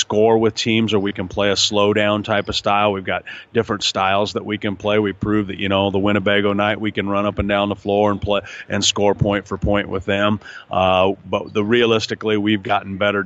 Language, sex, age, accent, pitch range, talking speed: English, male, 40-59, American, 95-105 Hz, 235 wpm